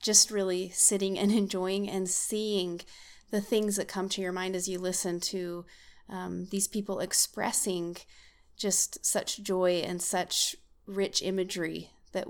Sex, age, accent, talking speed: female, 30-49, American, 145 wpm